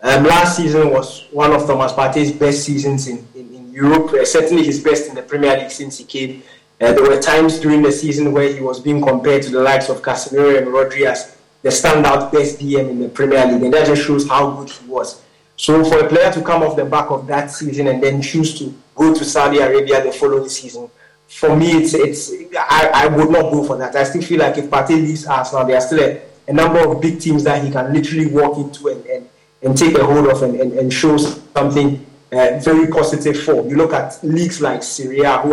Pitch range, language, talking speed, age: 135-155 Hz, English, 235 wpm, 20-39